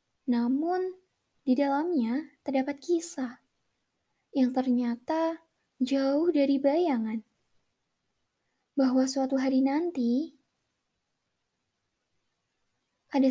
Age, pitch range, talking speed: 10-29, 250-285 Hz, 70 wpm